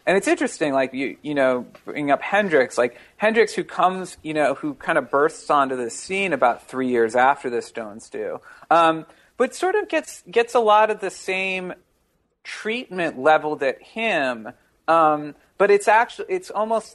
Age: 40-59